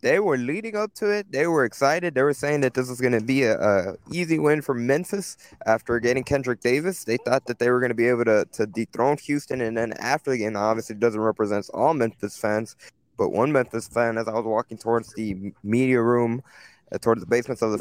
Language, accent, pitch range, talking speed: English, American, 115-135 Hz, 240 wpm